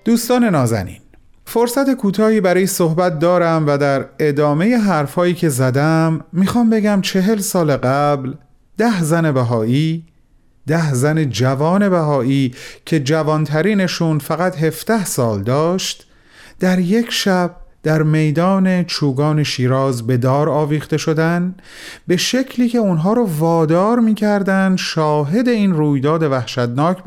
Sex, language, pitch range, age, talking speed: male, Persian, 135-190 Hz, 40-59, 120 wpm